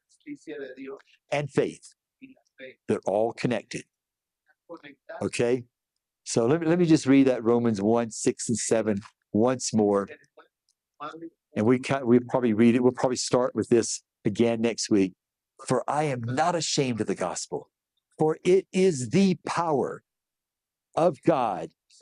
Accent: American